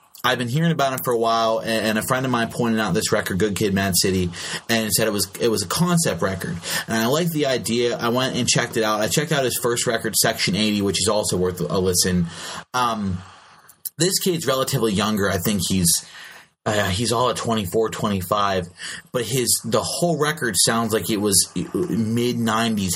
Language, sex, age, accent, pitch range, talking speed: English, male, 30-49, American, 105-135 Hz, 215 wpm